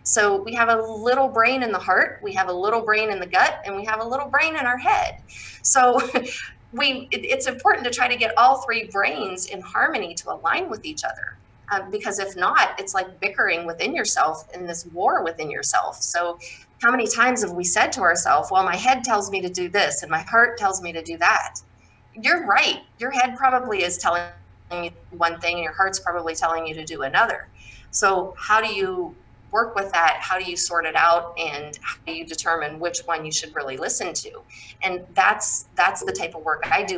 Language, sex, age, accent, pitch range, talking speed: English, female, 30-49, American, 165-225 Hz, 220 wpm